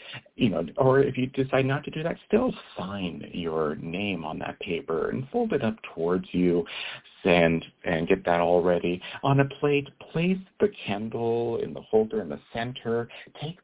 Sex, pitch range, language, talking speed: male, 90-130 Hz, English, 185 wpm